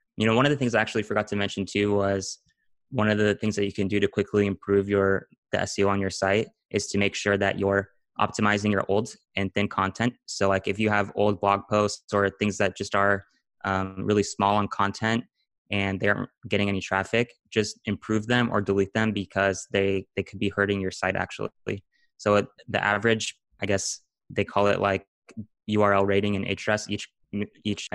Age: 20-39